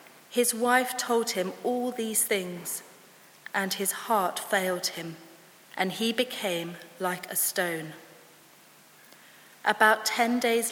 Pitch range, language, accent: 180-235 Hz, English, British